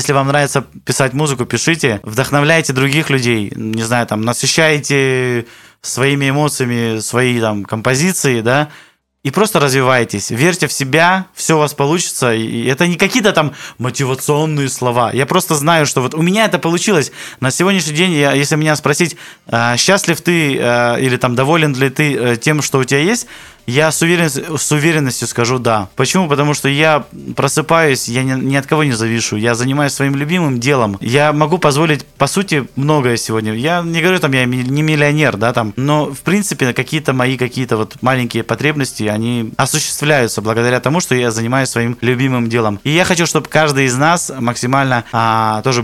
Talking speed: 170 wpm